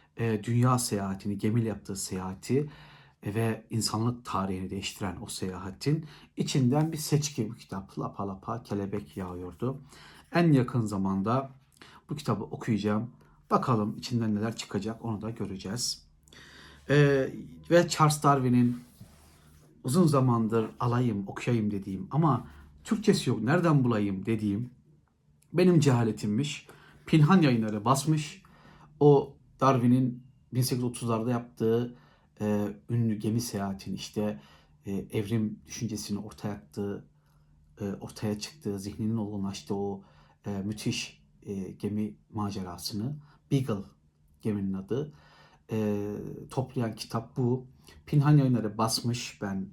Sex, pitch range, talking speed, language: male, 100-135 Hz, 110 wpm, Turkish